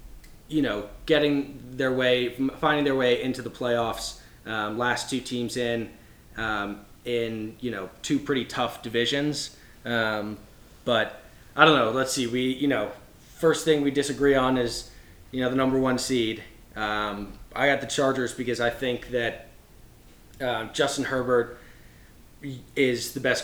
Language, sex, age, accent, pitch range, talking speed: English, male, 20-39, American, 115-130 Hz, 155 wpm